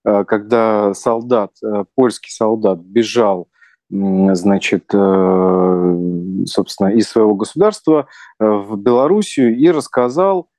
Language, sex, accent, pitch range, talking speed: Russian, male, native, 105-140 Hz, 80 wpm